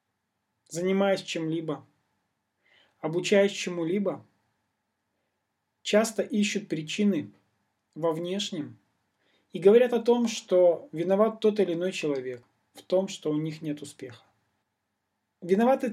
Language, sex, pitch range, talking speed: Russian, male, 160-215 Hz, 100 wpm